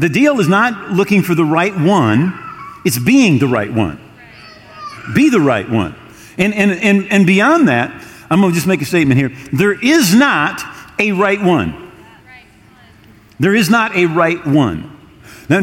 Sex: male